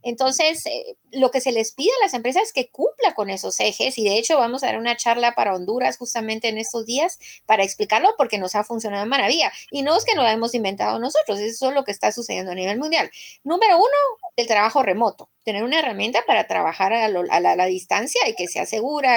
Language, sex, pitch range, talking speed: Spanish, female, 200-275 Hz, 230 wpm